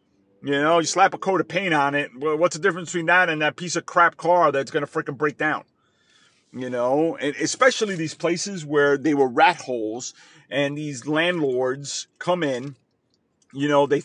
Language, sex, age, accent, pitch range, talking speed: English, male, 40-59, American, 140-180 Hz, 200 wpm